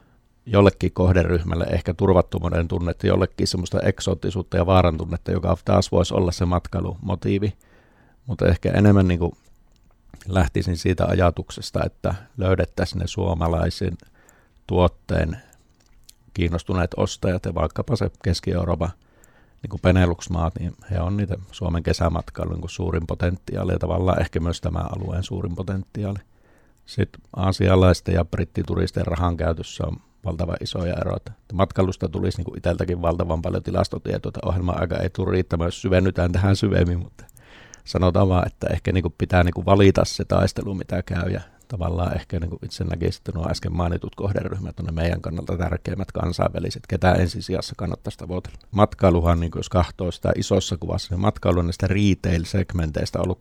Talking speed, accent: 140 wpm, native